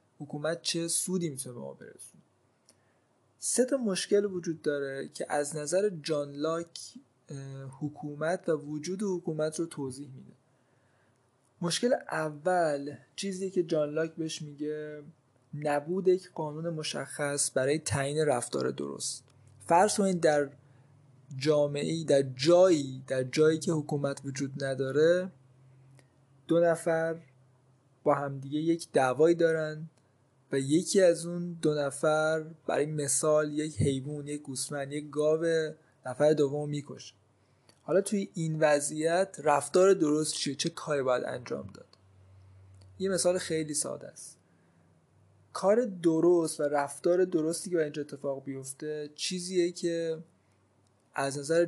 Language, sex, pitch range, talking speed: Persian, male, 135-165 Hz, 120 wpm